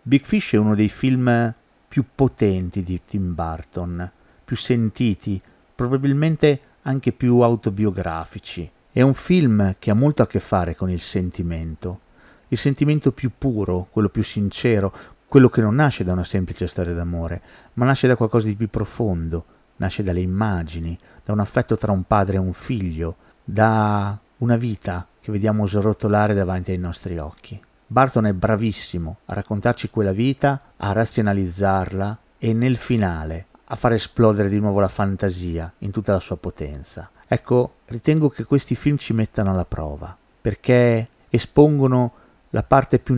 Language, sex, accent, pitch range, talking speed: Italian, male, native, 95-120 Hz, 155 wpm